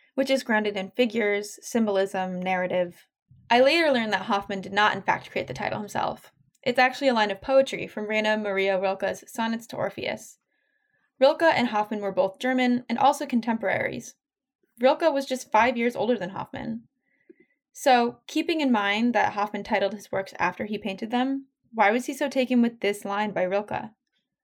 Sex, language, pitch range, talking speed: female, English, 200-255 Hz, 180 wpm